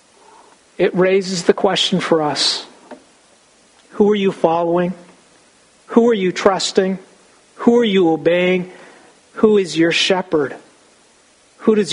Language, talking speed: English, 120 wpm